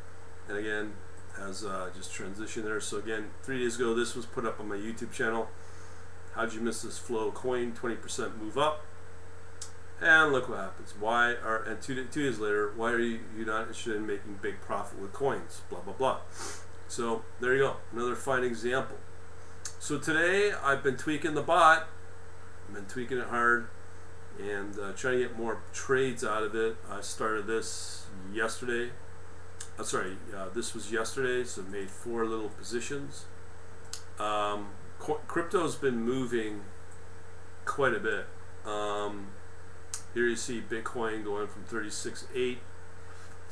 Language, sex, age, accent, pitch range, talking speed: English, male, 40-59, American, 90-120 Hz, 160 wpm